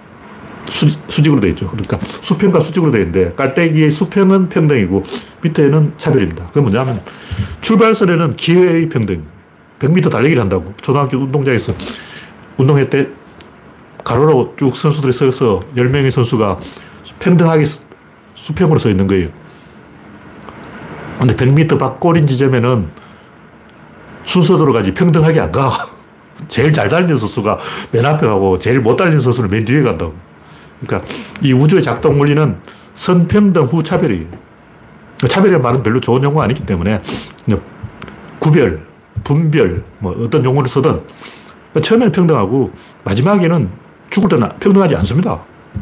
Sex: male